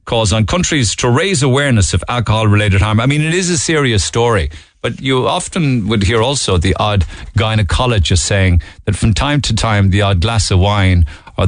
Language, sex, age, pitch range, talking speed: English, male, 50-69, 85-120 Hz, 195 wpm